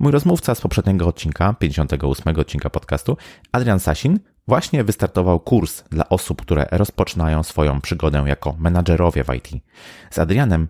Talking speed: 140 wpm